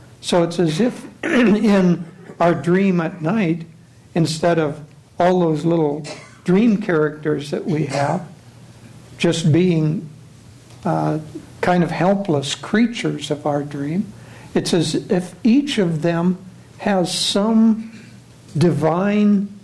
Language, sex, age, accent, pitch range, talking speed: English, male, 60-79, American, 145-180 Hz, 115 wpm